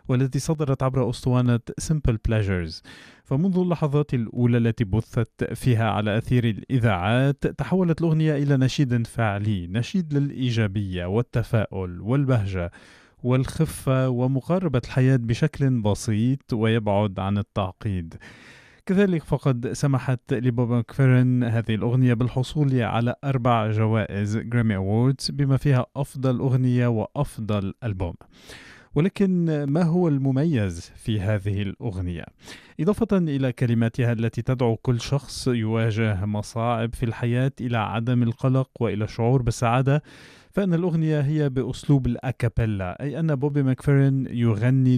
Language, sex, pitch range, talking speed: Arabic, male, 115-140 Hz, 110 wpm